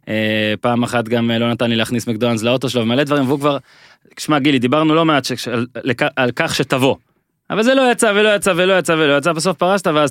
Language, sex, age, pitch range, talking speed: Hebrew, male, 20-39, 120-165 Hz, 235 wpm